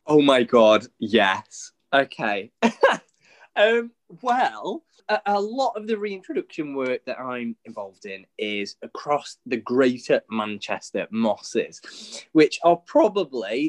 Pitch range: 140-230 Hz